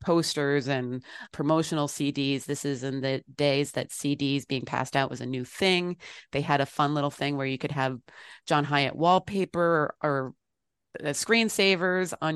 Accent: American